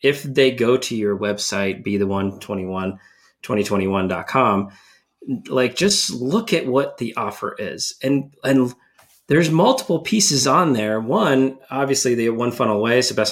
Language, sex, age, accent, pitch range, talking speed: English, male, 30-49, American, 110-140 Hz, 185 wpm